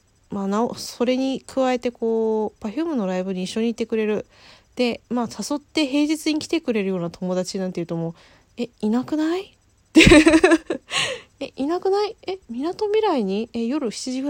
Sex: female